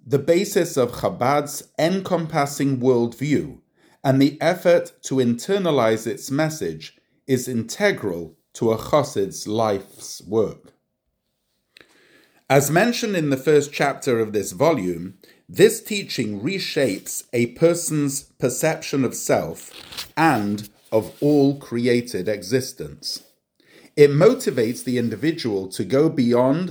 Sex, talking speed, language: male, 110 wpm, English